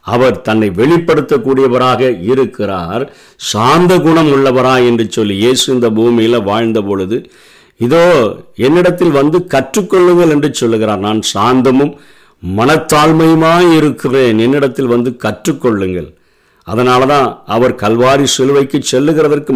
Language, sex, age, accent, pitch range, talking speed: Tamil, male, 50-69, native, 125-160 Hz, 100 wpm